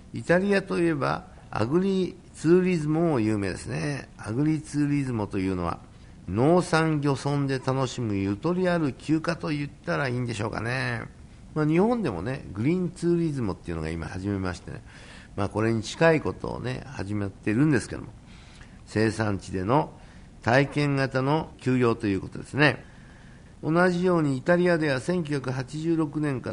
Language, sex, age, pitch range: Japanese, male, 60-79, 110-155 Hz